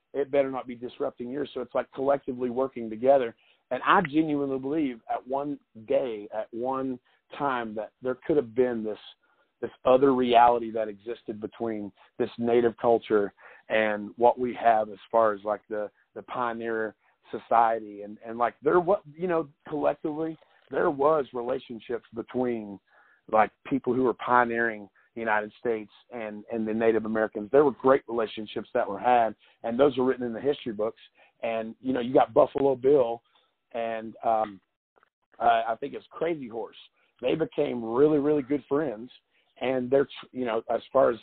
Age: 40-59